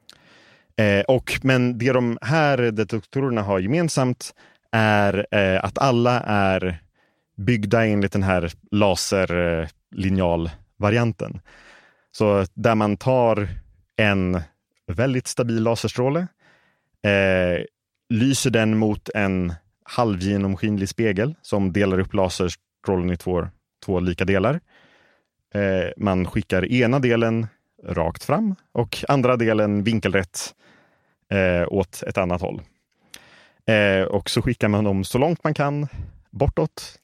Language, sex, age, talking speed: Swedish, male, 30-49, 115 wpm